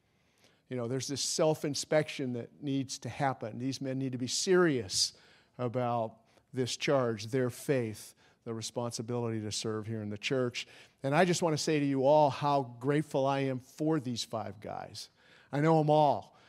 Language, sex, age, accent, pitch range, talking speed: English, male, 50-69, American, 125-160 Hz, 180 wpm